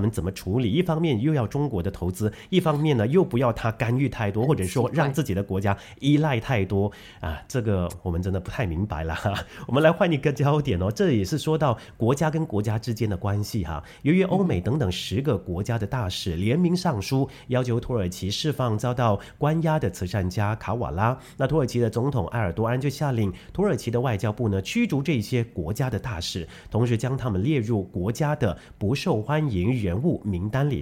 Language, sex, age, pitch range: English, male, 30-49, 100-150 Hz